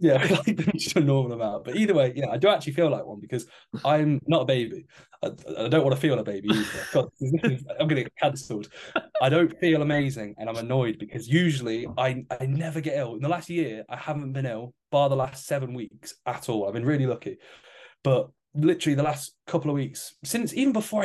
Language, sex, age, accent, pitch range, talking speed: English, male, 10-29, British, 115-150 Hz, 225 wpm